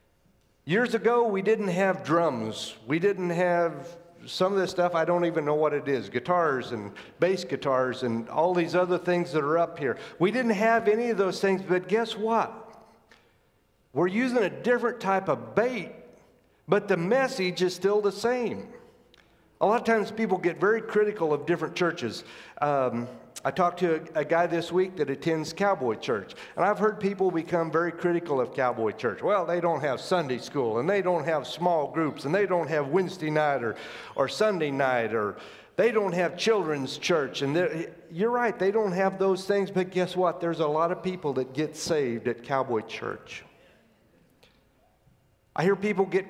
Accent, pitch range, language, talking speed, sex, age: American, 160-205 Hz, English, 190 wpm, male, 50-69